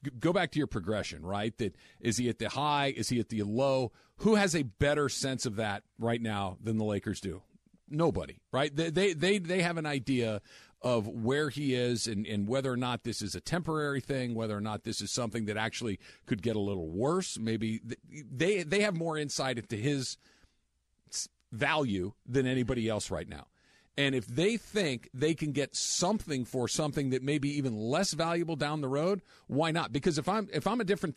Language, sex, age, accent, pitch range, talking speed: English, male, 40-59, American, 120-170 Hz, 205 wpm